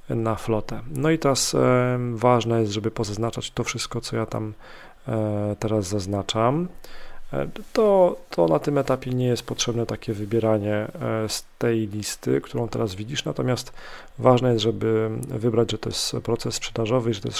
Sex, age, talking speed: male, 40-59, 160 wpm